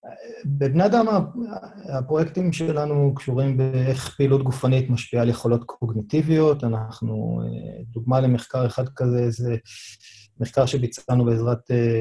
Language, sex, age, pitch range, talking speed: Hebrew, male, 30-49, 120-150 Hz, 105 wpm